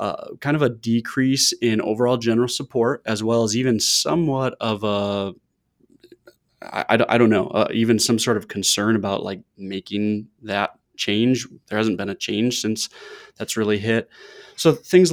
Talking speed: 165 wpm